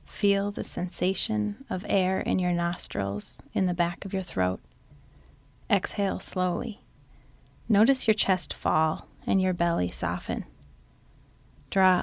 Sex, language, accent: female, English, American